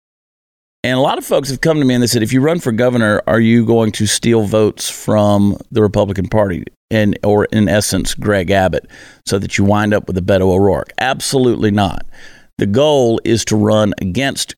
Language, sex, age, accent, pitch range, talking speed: English, male, 50-69, American, 100-115 Hz, 205 wpm